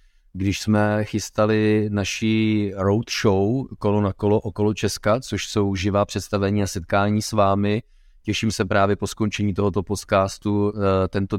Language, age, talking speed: Czech, 30-49, 135 wpm